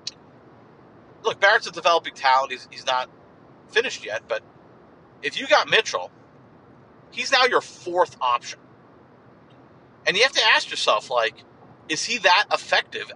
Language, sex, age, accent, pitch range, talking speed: English, male, 40-59, American, 135-200 Hz, 140 wpm